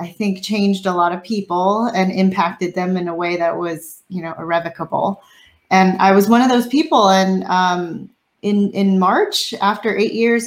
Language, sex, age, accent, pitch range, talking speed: English, female, 30-49, American, 180-230 Hz, 190 wpm